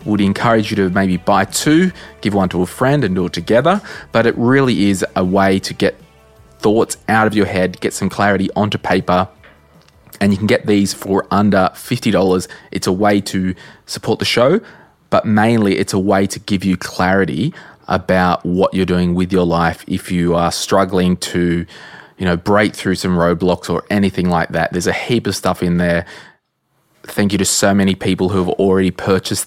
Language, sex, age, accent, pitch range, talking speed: English, male, 20-39, Australian, 95-115 Hz, 200 wpm